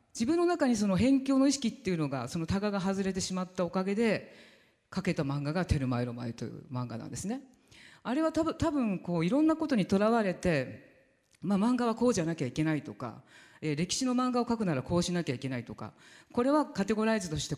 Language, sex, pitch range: Japanese, female, 145-240 Hz